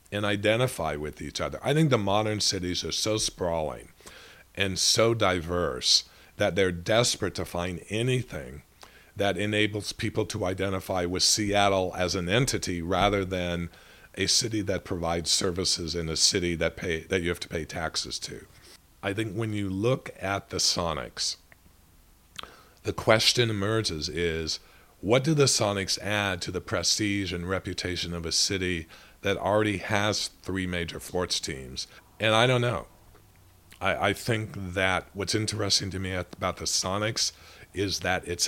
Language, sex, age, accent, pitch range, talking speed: English, male, 50-69, American, 85-105 Hz, 155 wpm